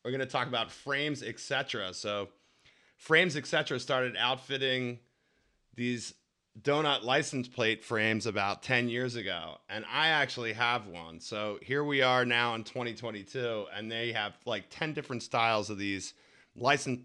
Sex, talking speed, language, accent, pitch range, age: male, 160 wpm, English, American, 115-150 Hz, 30-49